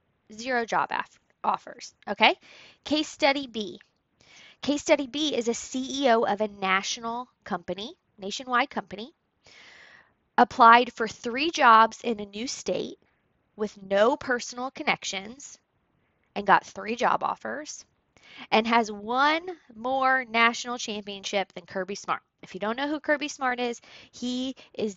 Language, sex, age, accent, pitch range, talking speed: English, female, 20-39, American, 200-265 Hz, 130 wpm